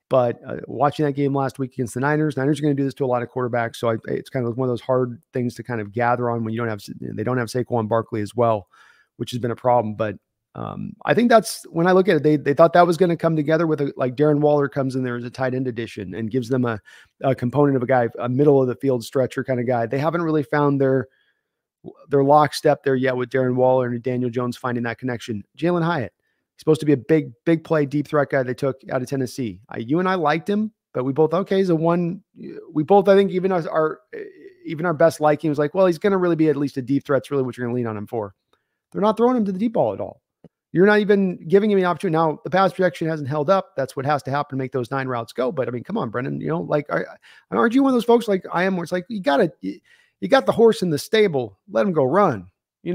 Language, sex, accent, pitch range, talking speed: English, male, American, 125-175 Hz, 290 wpm